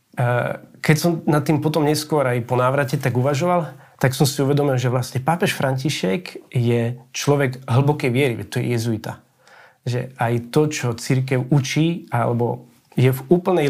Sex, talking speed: male, 160 wpm